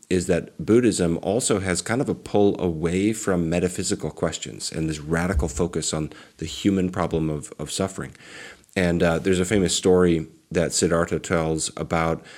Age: 30-49